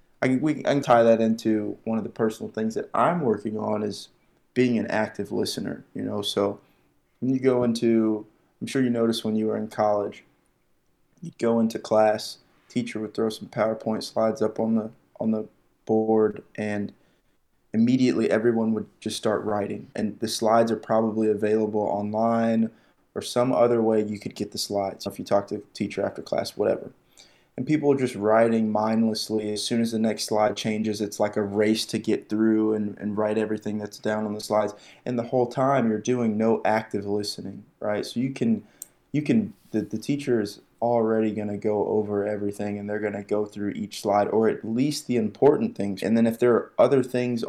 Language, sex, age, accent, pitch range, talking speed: English, male, 20-39, American, 105-115 Hz, 200 wpm